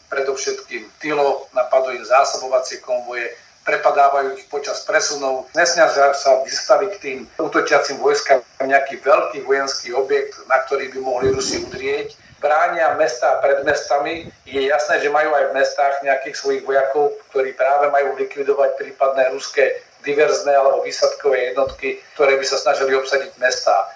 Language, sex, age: Slovak, male, 50-69